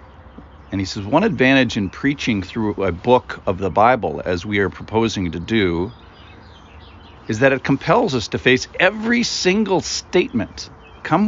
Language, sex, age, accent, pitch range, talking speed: English, male, 50-69, American, 85-130 Hz, 160 wpm